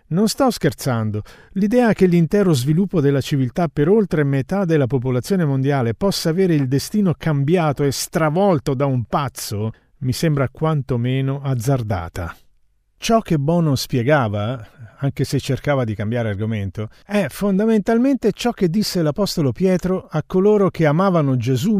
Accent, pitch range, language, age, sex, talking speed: native, 130-195 Hz, Italian, 50-69, male, 140 wpm